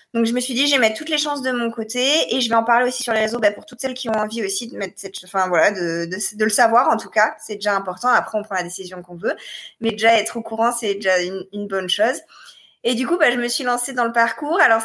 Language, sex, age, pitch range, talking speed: French, female, 20-39, 205-250 Hz, 305 wpm